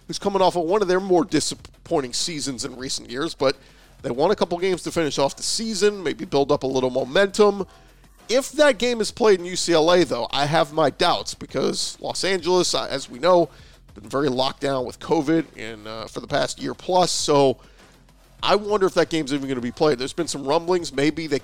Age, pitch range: 40-59, 135-185 Hz